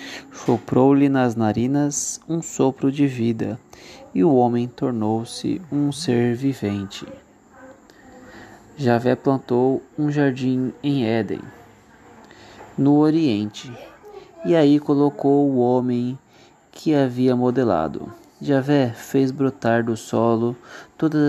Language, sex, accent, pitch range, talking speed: Portuguese, male, Brazilian, 115-140 Hz, 105 wpm